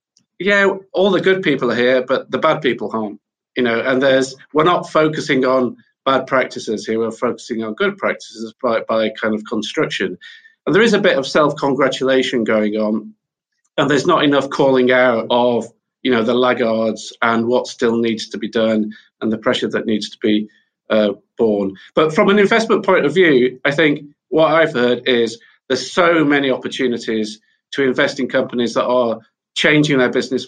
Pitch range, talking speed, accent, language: 115-135 Hz, 185 wpm, British, English